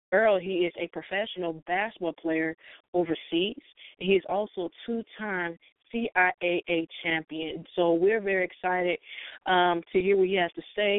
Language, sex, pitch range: English, female, 170-190 Hz